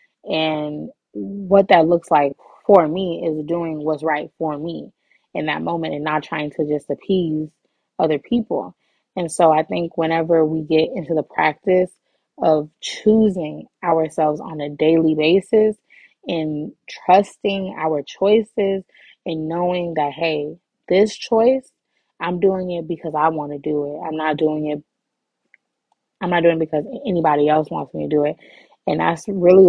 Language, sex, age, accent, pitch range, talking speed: English, female, 20-39, American, 155-180 Hz, 160 wpm